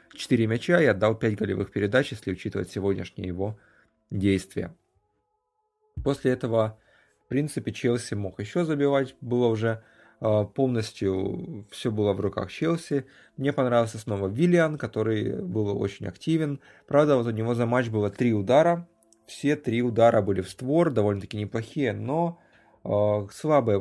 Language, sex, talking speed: Russian, male, 140 wpm